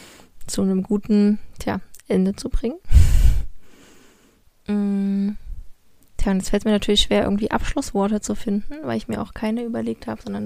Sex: female